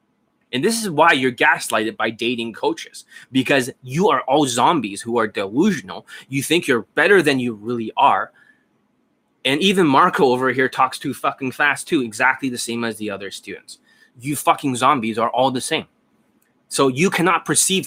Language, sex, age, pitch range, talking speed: English, male, 20-39, 115-155 Hz, 180 wpm